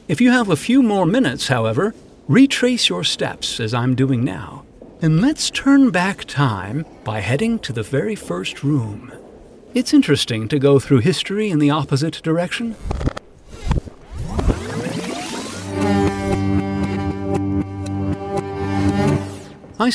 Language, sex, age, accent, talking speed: English, male, 50-69, American, 115 wpm